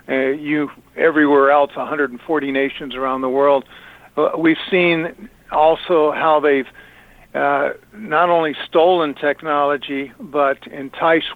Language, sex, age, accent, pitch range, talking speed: English, male, 60-79, American, 140-165 Hz, 115 wpm